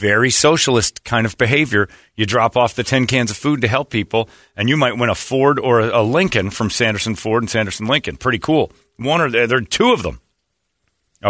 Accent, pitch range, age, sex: American, 95-130 Hz, 40-59, male